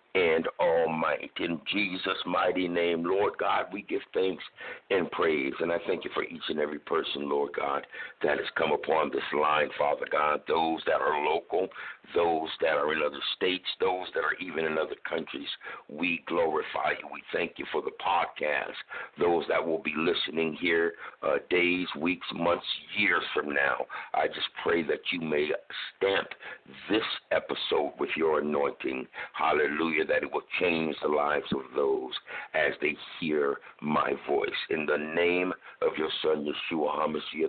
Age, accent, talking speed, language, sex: 60-79, American, 170 wpm, English, male